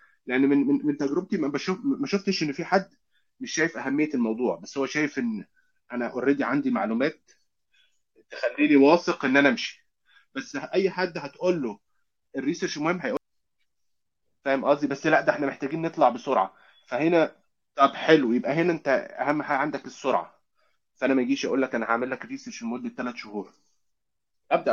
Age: 30-49